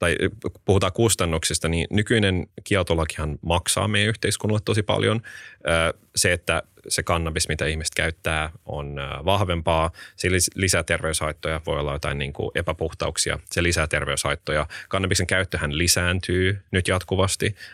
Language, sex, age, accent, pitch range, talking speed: Finnish, male, 20-39, native, 75-95 Hz, 120 wpm